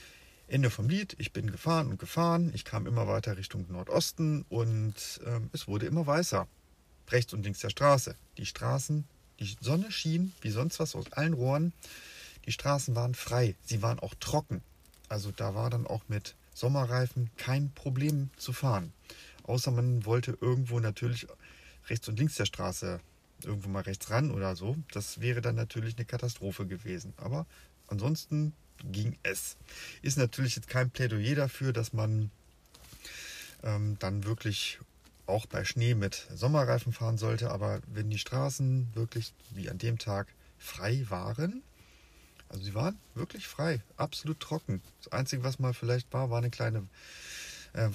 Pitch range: 105-135 Hz